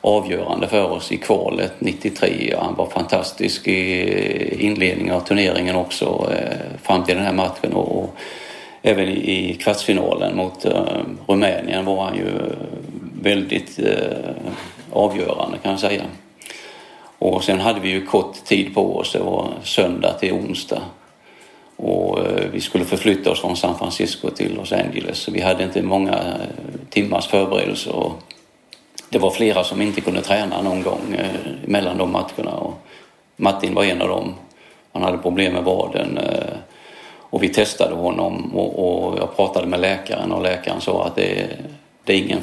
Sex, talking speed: male, 150 wpm